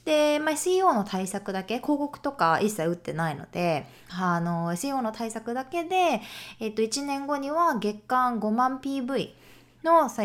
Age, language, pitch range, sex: 20-39, Japanese, 170-250 Hz, female